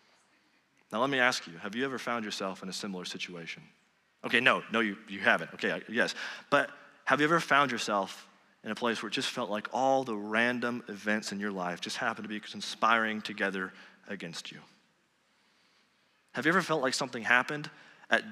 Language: English